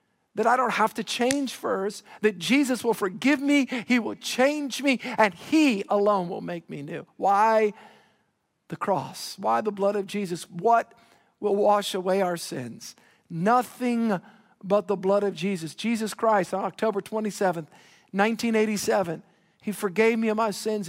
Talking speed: 160 wpm